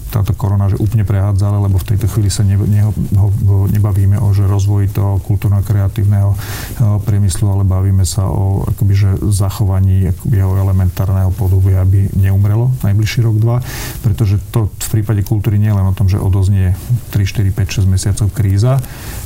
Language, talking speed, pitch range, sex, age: Slovak, 145 wpm, 100-110 Hz, male, 40-59